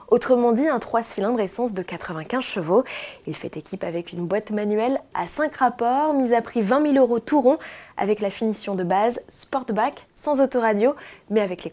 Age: 20-39